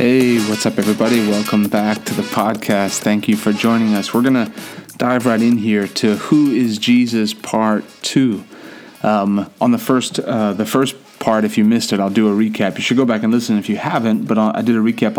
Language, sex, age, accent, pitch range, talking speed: English, male, 30-49, American, 105-120 Hz, 225 wpm